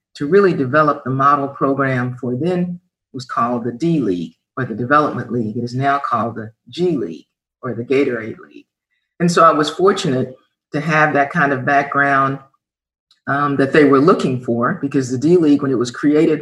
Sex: female